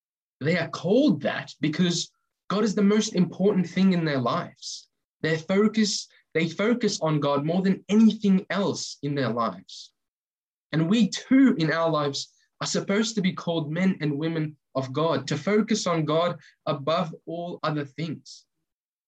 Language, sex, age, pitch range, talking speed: English, male, 10-29, 155-200 Hz, 160 wpm